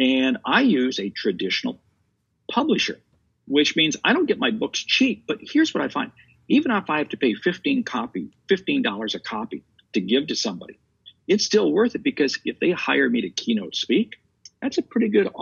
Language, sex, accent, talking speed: English, male, American, 190 wpm